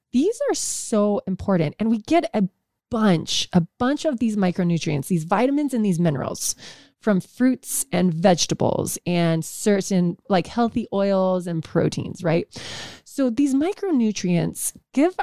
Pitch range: 180-235 Hz